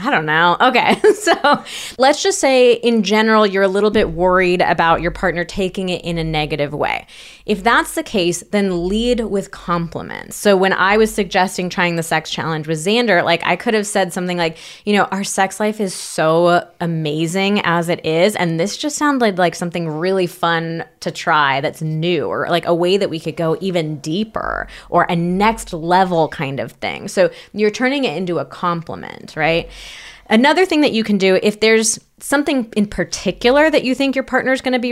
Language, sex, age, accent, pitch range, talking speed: English, female, 20-39, American, 170-215 Hz, 205 wpm